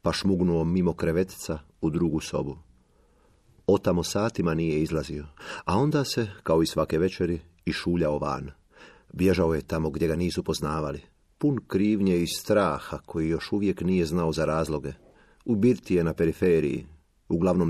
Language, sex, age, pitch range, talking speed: Croatian, male, 40-59, 80-90 Hz, 150 wpm